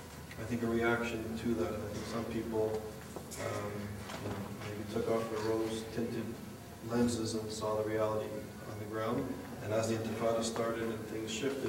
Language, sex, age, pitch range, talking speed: English, male, 40-59, 110-115 Hz, 165 wpm